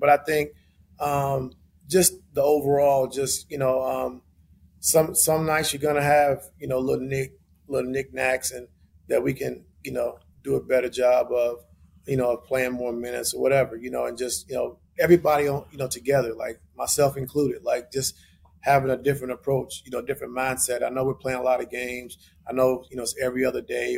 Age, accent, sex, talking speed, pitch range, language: 30-49, American, male, 195 wpm, 120-135 Hz, English